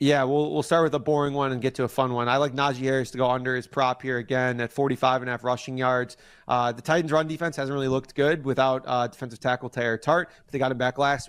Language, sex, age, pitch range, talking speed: English, male, 30-49, 120-140 Hz, 280 wpm